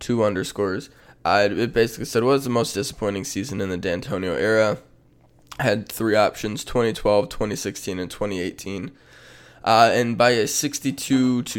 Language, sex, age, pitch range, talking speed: English, male, 20-39, 100-125 Hz, 145 wpm